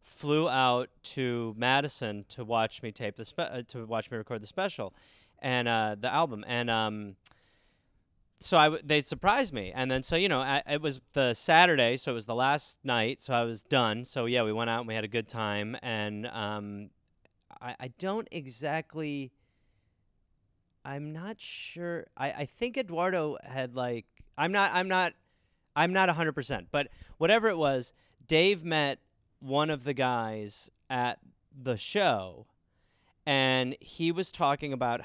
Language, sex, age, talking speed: English, male, 30-49, 175 wpm